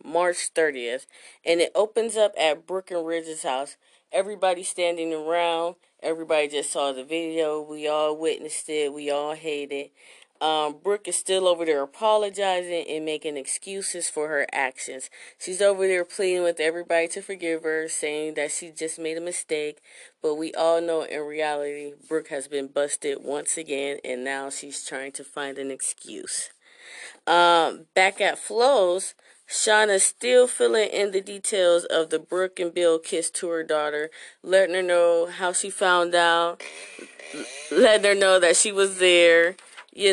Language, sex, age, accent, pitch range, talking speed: English, female, 20-39, American, 155-190 Hz, 165 wpm